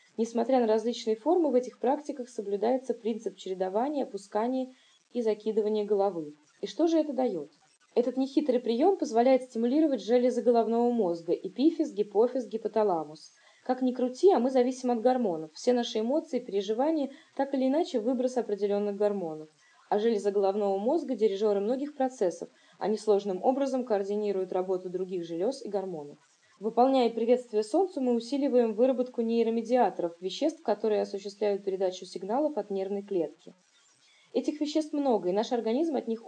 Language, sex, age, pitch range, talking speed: Russian, female, 20-39, 195-255 Hz, 145 wpm